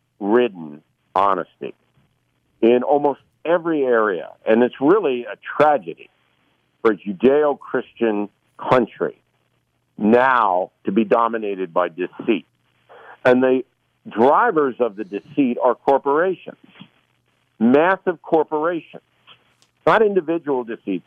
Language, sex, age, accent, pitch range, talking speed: English, male, 60-79, American, 120-165 Hz, 95 wpm